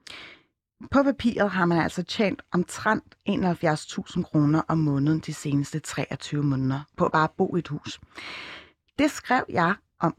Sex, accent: female, native